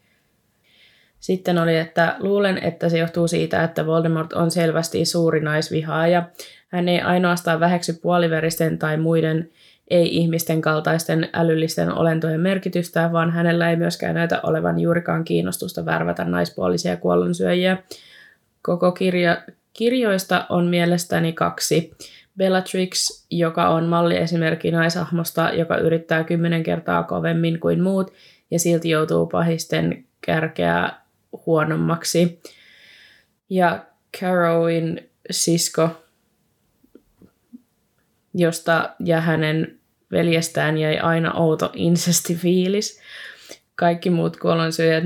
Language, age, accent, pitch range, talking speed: Finnish, 20-39, native, 160-175 Hz, 100 wpm